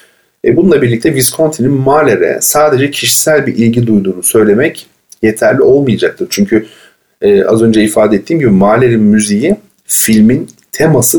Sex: male